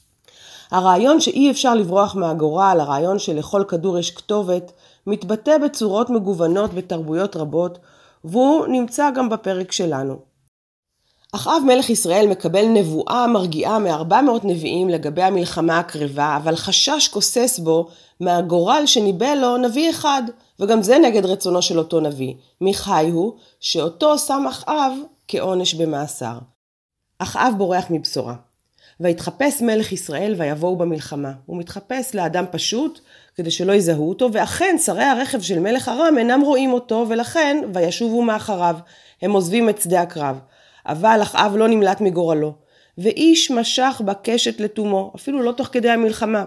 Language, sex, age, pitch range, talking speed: Hebrew, female, 30-49, 170-240 Hz, 130 wpm